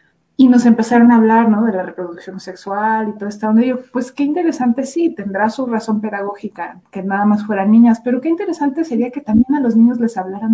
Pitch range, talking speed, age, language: 205-250 Hz, 220 wpm, 30-49, Spanish